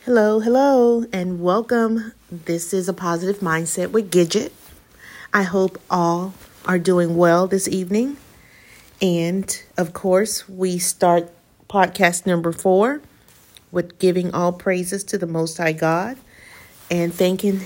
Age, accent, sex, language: 40-59, American, female, English